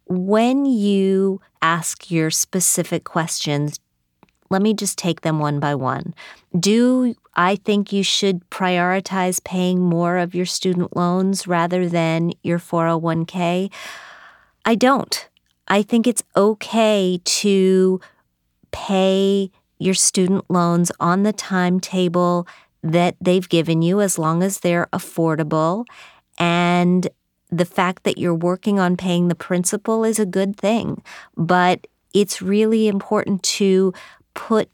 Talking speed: 125 wpm